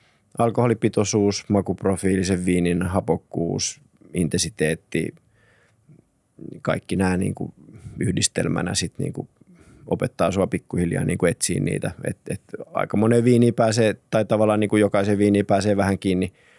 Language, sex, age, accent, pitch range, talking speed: Finnish, male, 20-39, native, 90-110 Hz, 85 wpm